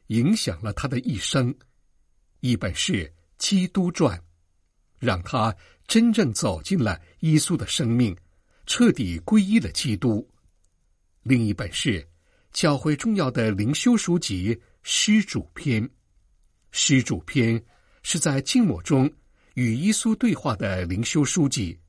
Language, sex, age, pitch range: Chinese, male, 60-79, 90-150 Hz